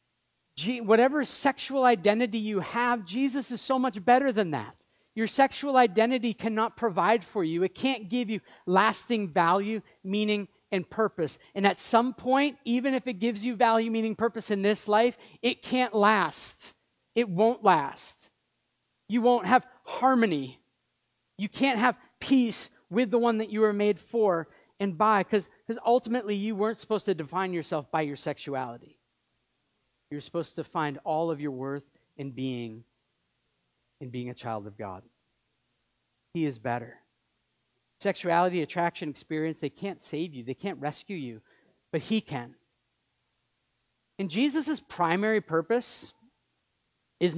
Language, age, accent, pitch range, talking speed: English, 40-59, American, 160-230 Hz, 145 wpm